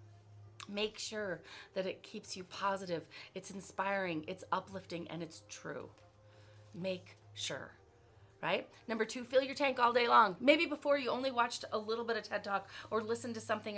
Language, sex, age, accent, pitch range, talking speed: English, female, 30-49, American, 145-235 Hz, 175 wpm